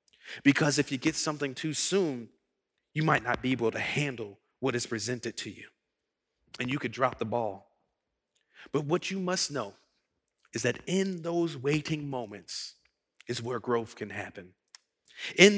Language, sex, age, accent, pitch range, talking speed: English, male, 40-59, American, 120-155 Hz, 160 wpm